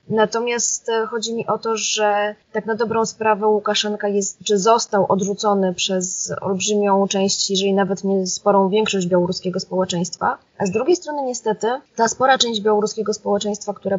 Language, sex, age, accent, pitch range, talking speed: Polish, female, 20-39, native, 195-220 Hz, 155 wpm